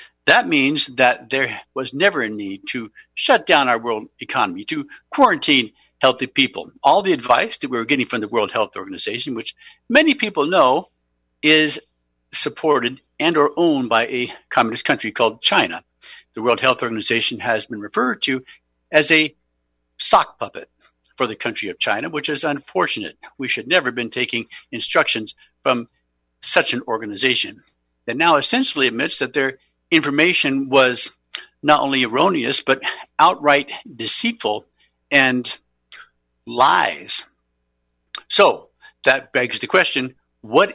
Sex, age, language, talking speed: male, 60-79, English, 145 wpm